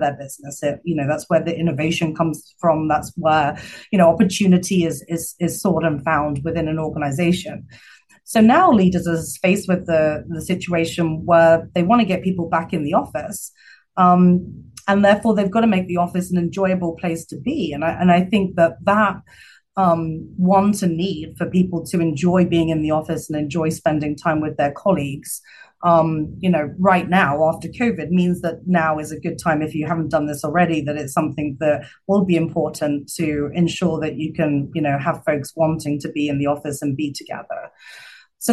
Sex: female